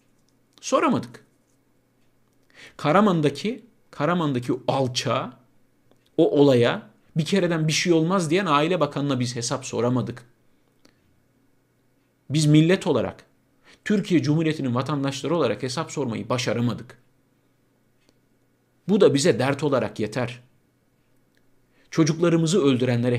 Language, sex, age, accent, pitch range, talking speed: Turkish, male, 50-69, native, 125-190 Hz, 95 wpm